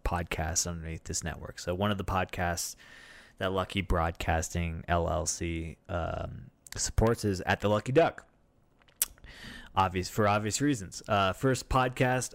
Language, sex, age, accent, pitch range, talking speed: English, male, 20-39, American, 85-100 Hz, 130 wpm